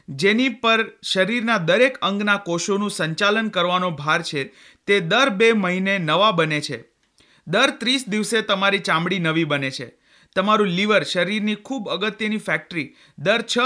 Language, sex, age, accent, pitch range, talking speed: Hindi, male, 30-49, native, 175-220 Hz, 125 wpm